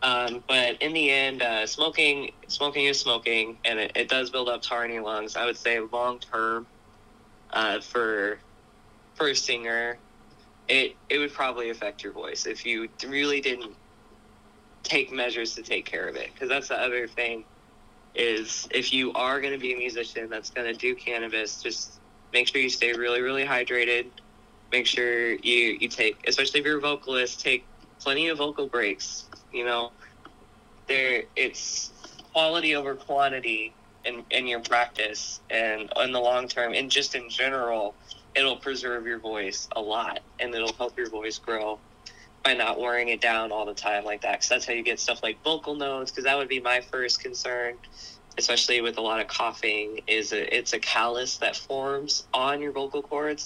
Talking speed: 185 wpm